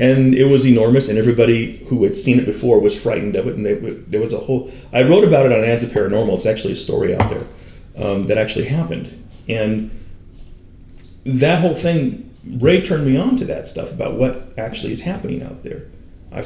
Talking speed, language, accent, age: 210 wpm, English, American, 30-49